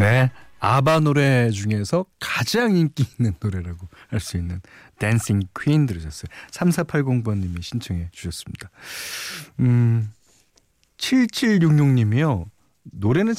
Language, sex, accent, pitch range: Korean, male, native, 100-165 Hz